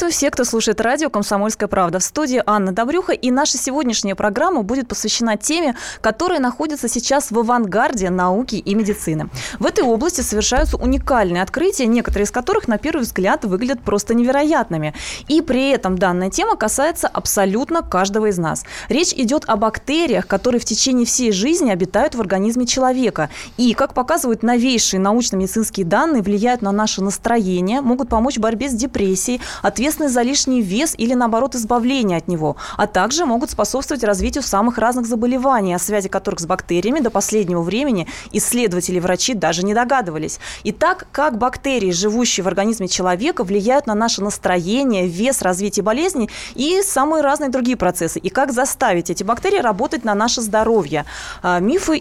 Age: 20-39